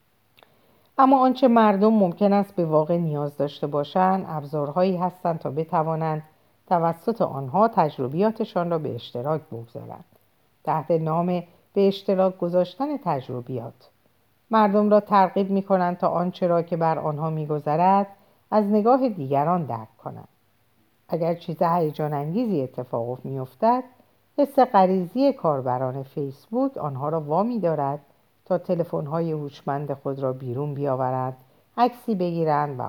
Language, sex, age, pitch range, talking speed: Persian, female, 50-69, 140-190 Hz, 120 wpm